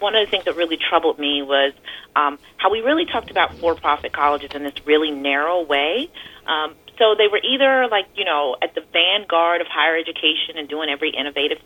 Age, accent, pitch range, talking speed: 30-49, American, 145-205 Hz, 205 wpm